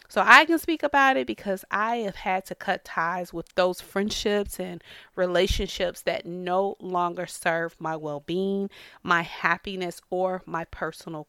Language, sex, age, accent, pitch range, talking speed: English, female, 30-49, American, 180-245 Hz, 155 wpm